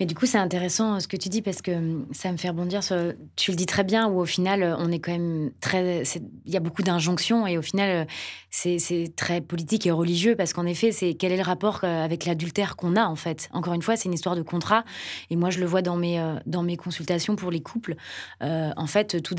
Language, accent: French, French